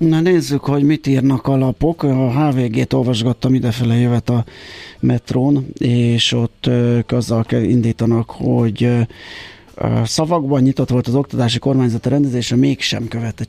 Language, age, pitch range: Hungarian, 30-49, 110-130 Hz